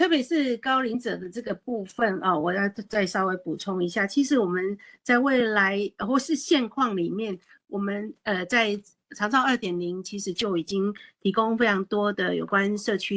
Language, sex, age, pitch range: Chinese, female, 50-69, 185-235 Hz